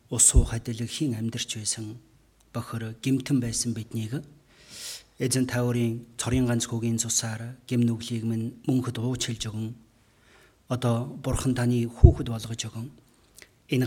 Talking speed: 120 wpm